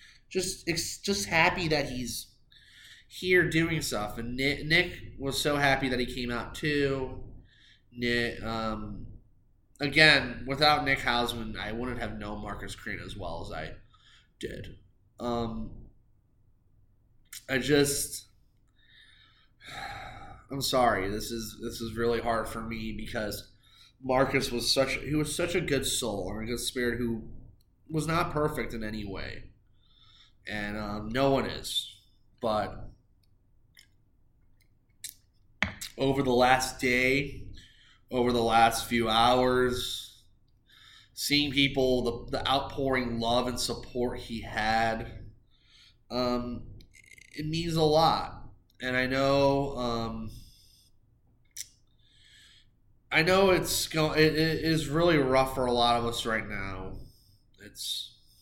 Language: English